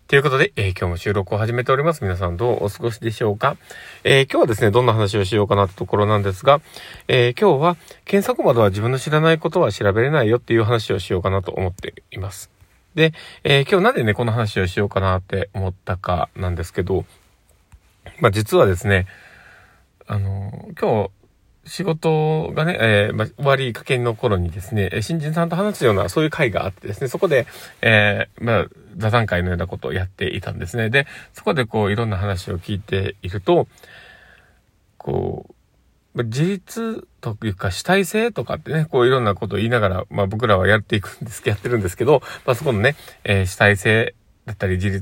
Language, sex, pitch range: Japanese, male, 95-130 Hz